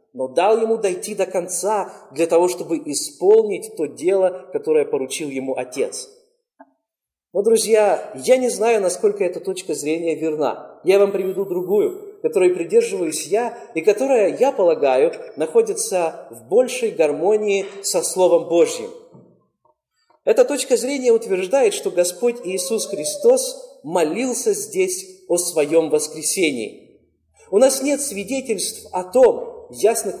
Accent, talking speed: native, 125 wpm